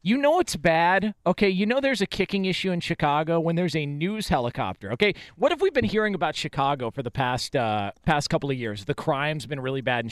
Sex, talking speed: male, 235 wpm